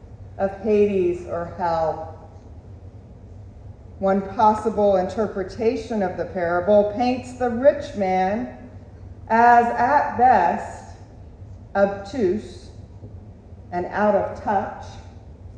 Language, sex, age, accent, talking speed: English, female, 40-59, American, 85 wpm